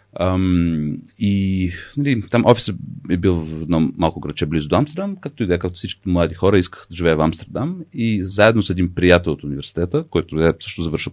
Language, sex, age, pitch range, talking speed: Bulgarian, male, 40-59, 85-105 Hz, 190 wpm